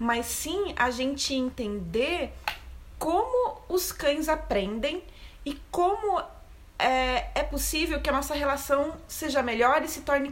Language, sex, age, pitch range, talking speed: Portuguese, female, 30-49, 235-295 Hz, 135 wpm